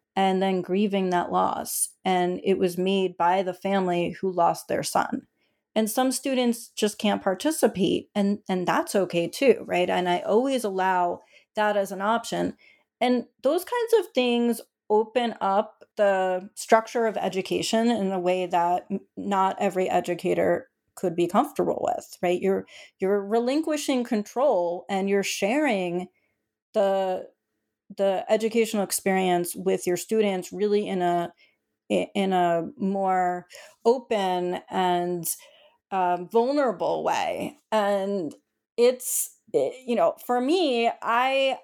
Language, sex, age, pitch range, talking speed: English, female, 30-49, 185-235 Hz, 130 wpm